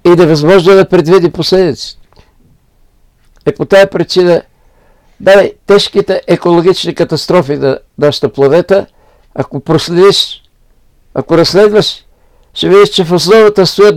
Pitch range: 150-190 Hz